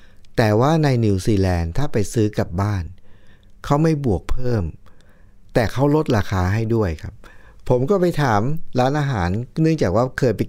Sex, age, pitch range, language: male, 60-79, 95-130 Hz, Thai